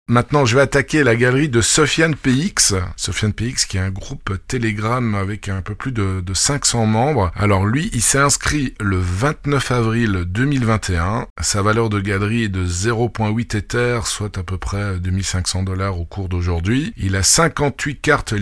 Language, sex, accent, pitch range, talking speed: French, male, French, 95-120 Hz, 175 wpm